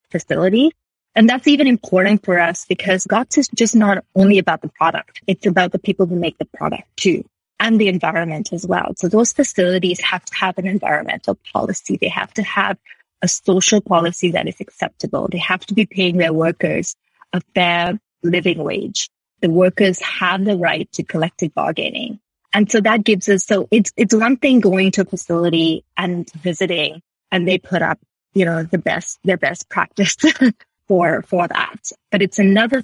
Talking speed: 185 wpm